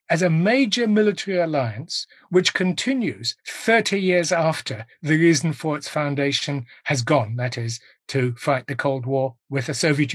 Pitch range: 145-190 Hz